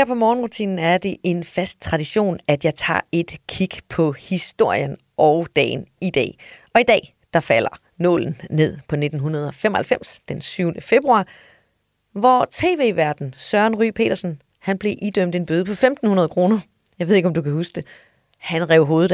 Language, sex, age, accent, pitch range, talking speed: Danish, female, 30-49, native, 165-215 Hz, 170 wpm